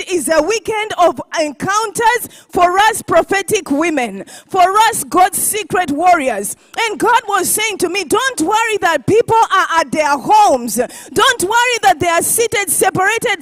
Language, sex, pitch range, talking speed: English, female, 330-430 Hz, 155 wpm